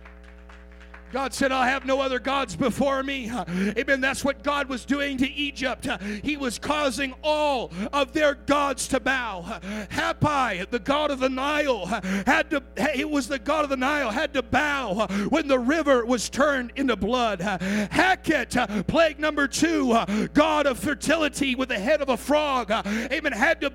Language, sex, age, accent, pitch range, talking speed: English, male, 50-69, American, 240-310 Hz, 170 wpm